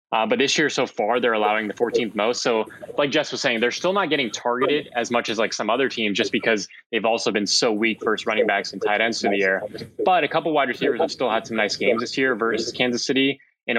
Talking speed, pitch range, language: 265 wpm, 105-125 Hz, English